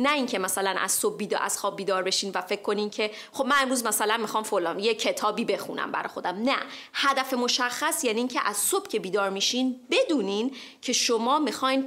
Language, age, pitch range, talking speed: Persian, 30-49, 200-260 Hz, 195 wpm